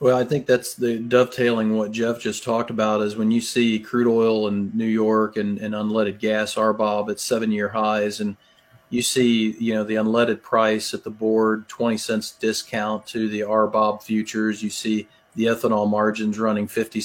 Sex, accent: male, American